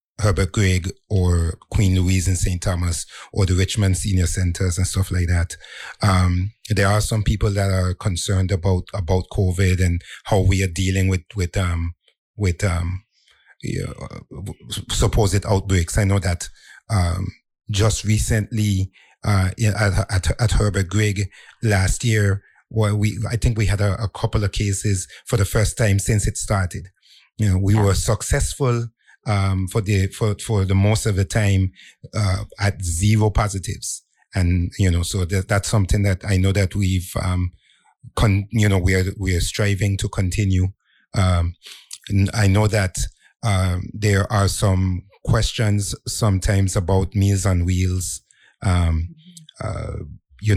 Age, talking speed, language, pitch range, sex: 30-49, 160 wpm, English, 95-105 Hz, male